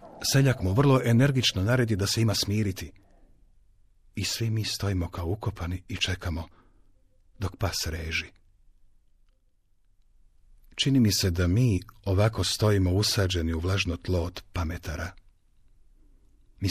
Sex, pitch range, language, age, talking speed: male, 85-105 Hz, Croatian, 50-69, 120 wpm